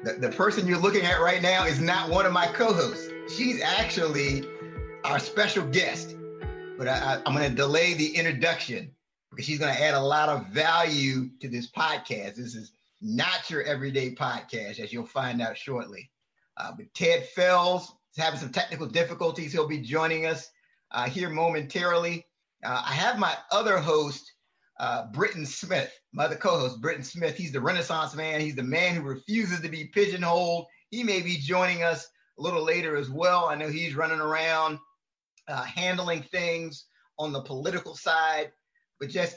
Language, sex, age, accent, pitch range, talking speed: English, male, 30-49, American, 145-180 Hz, 175 wpm